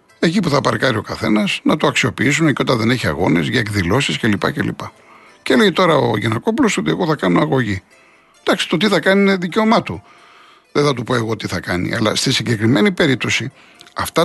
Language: Greek